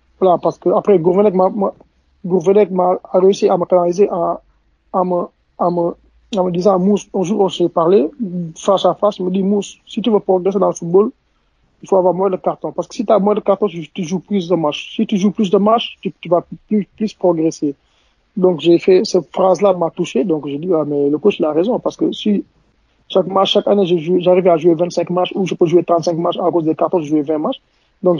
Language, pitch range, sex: French, 165-190 Hz, male